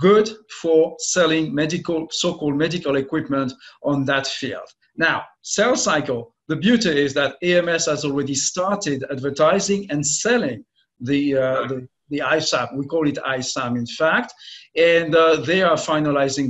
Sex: male